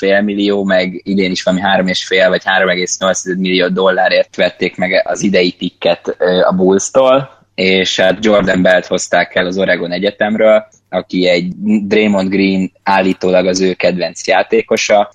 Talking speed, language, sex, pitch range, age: 145 wpm, Hungarian, male, 90-100 Hz, 20-39